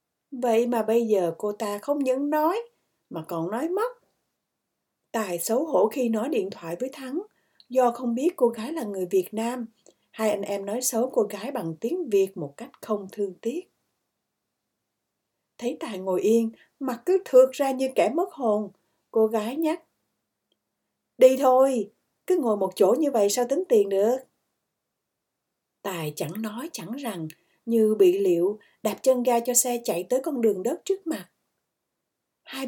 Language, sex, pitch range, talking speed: Vietnamese, female, 210-265 Hz, 175 wpm